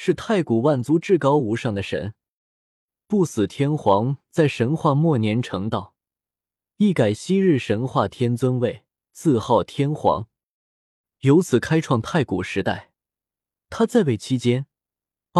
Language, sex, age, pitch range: Chinese, male, 20-39, 105-155 Hz